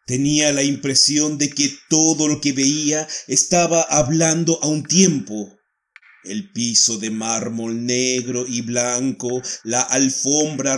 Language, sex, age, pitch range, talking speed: Spanish, male, 40-59, 125-165 Hz, 130 wpm